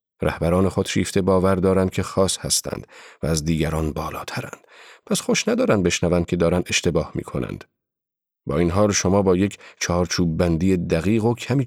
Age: 40-59